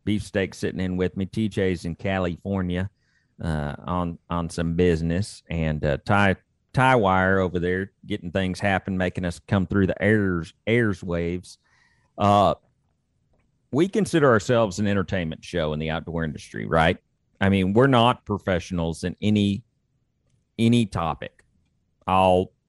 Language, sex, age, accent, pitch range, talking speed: English, male, 40-59, American, 90-115 Hz, 140 wpm